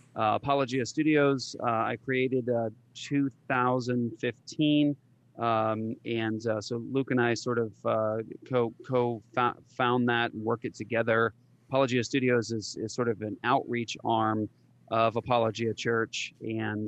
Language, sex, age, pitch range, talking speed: English, male, 30-49, 115-130 Hz, 130 wpm